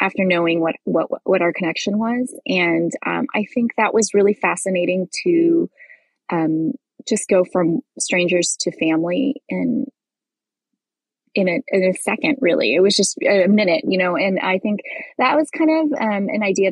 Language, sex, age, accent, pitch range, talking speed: English, female, 20-39, American, 180-235 Hz, 170 wpm